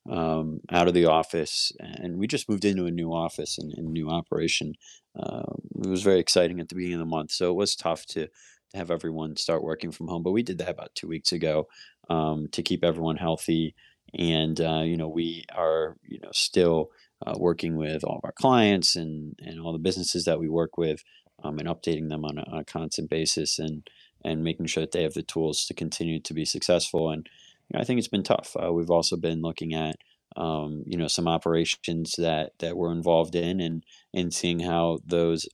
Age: 30-49